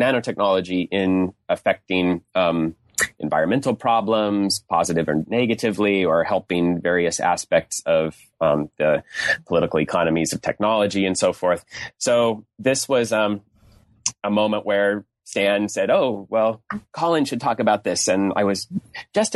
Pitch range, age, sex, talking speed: 95-110 Hz, 30-49, male, 135 wpm